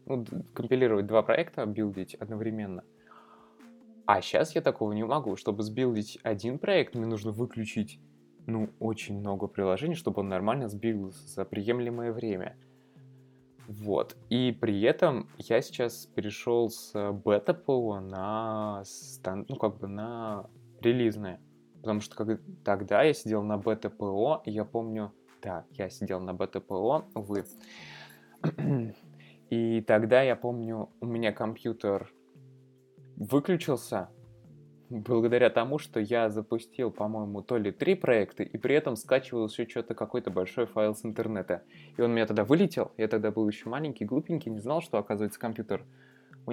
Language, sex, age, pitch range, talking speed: Russian, male, 20-39, 105-125 Hz, 140 wpm